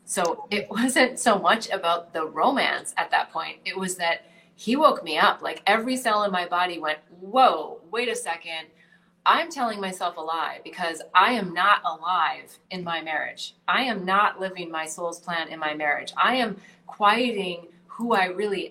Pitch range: 175-235 Hz